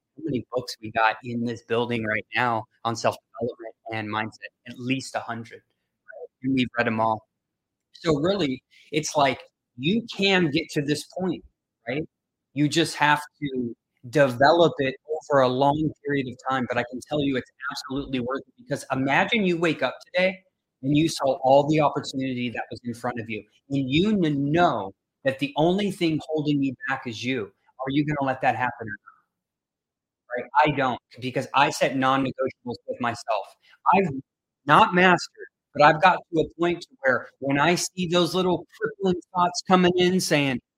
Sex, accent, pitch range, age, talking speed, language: male, American, 130-175 Hz, 30-49, 180 wpm, English